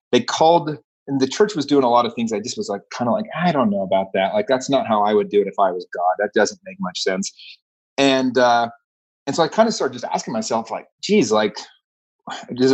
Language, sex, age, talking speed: English, male, 30-49, 260 wpm